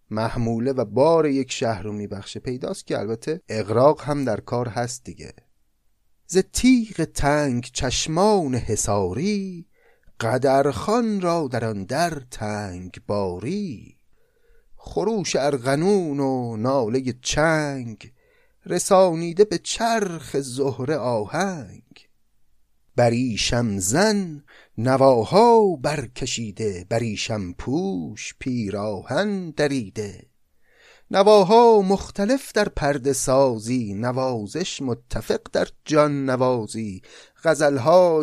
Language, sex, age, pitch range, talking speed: Persian, male, 30-49, 120-170 Hz, 90 wpm